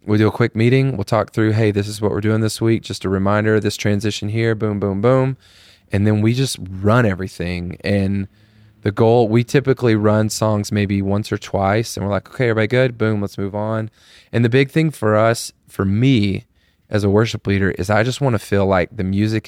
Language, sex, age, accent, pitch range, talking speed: English, male, 20-39, American, 95-110 Hz, 230 wpm